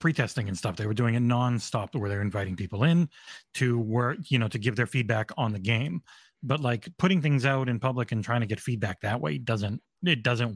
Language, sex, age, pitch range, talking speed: English, male, 30-49, 105-135 Hz, 235 wpm